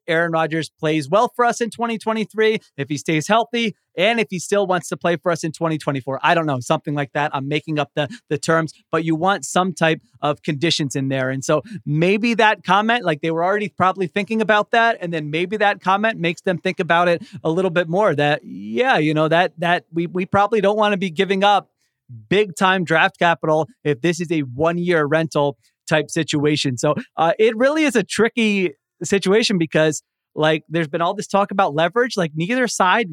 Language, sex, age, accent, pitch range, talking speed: English, male, 30-49, American, 155-200 Hz, 215 wpm